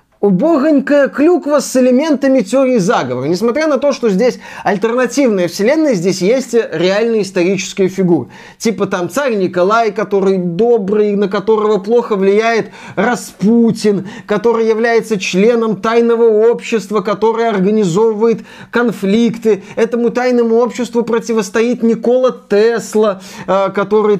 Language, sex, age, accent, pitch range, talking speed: Russian, male, 20-39, native, 195-230 Hz, 110 wpm